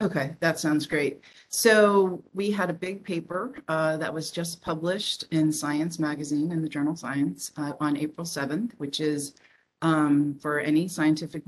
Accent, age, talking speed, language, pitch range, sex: American, 40-59, 165 wpm, English, 140-155 Hz, female